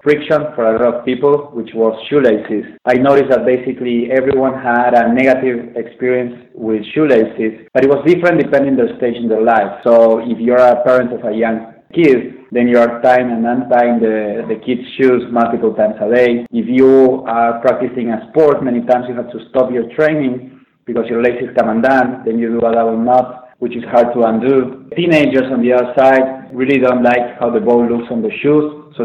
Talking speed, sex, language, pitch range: 205 wpm, male, English, 115-130 Hz